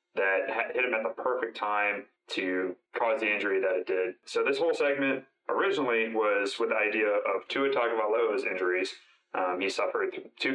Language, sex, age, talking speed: English, male, 30-49, 175 wpm